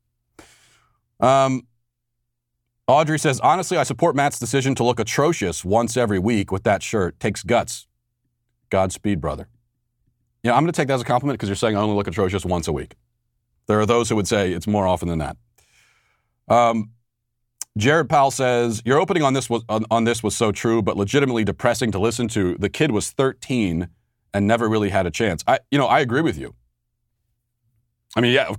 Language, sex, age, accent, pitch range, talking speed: English, male, 40-59, American, 105-120 Hz, 195 wpm